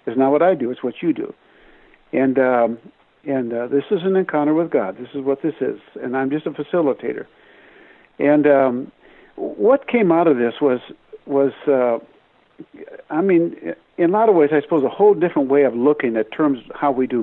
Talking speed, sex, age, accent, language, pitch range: 210 wpm, male, 60-79, American, English, 135-180 Hz